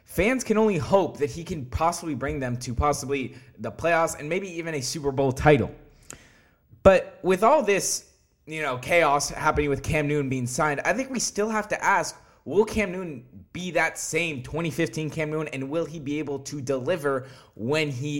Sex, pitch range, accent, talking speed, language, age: male, 125-160 Hz, American, 195 wpm, English, 20-39